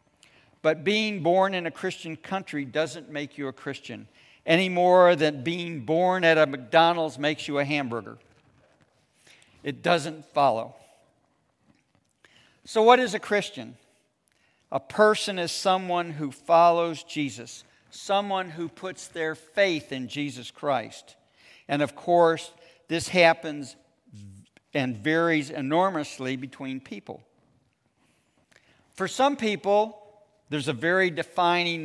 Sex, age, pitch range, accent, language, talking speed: male, 60-79, 140-180 Hz, American, English, 120 wpm